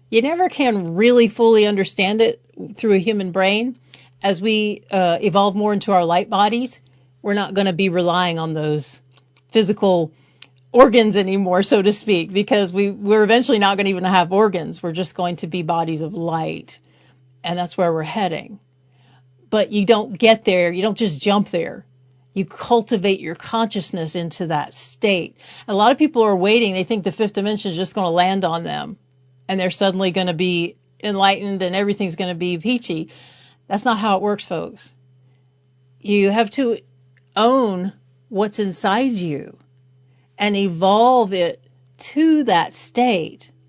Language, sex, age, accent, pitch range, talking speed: English, female, 40-59, American, 160-215 Hz, 170 wpm